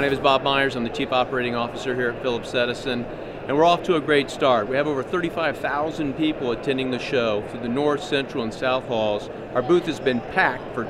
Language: English